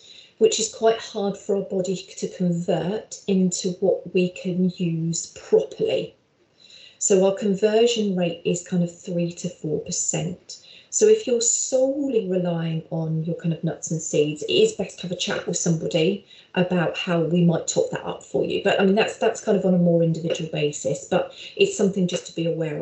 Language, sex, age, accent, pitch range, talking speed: English, female, 30-49, British, 170-215 Hz, 195 wpm